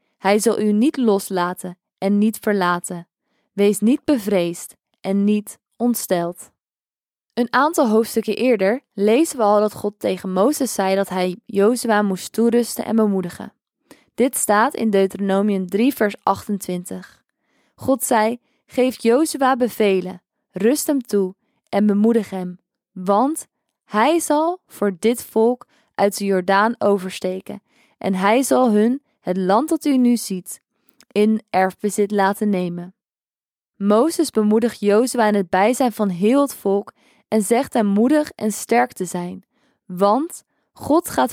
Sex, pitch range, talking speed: female, 195-240 Hz, 140 wpm